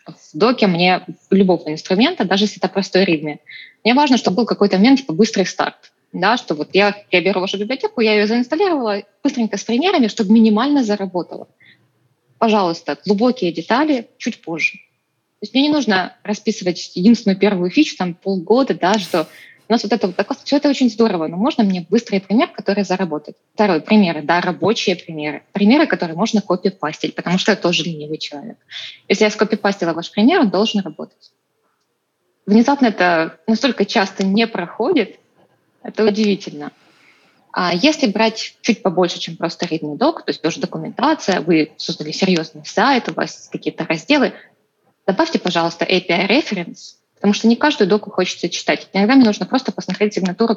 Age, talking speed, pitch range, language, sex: 20-39, 165 wpm, 180-230 Hz, Russian, female